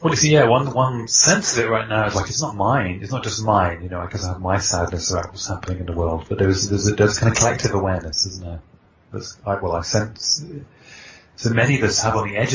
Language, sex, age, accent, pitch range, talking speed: English, male, 30-49, British, 85-110 Hz, 275 wpm